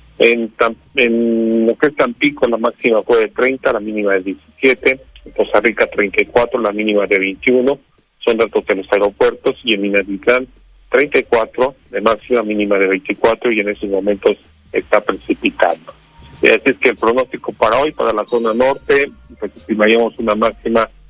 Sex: male